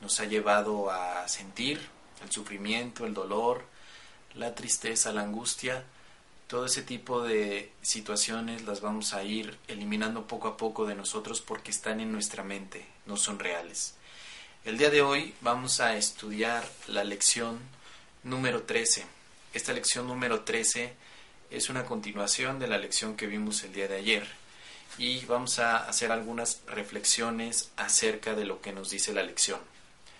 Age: 30-49